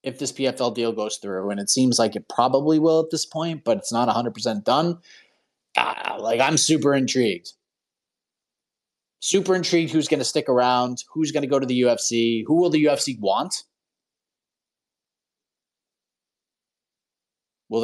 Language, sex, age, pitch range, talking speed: English, male, 30-49, 125-160 Hz, 160 wpm